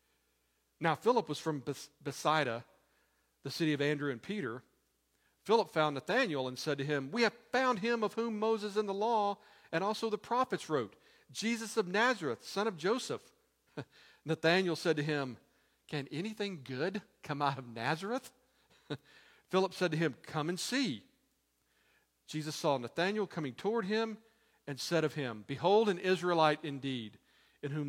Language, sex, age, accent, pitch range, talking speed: English, male, 50-69, American, 125-185 Hz, 155 wpm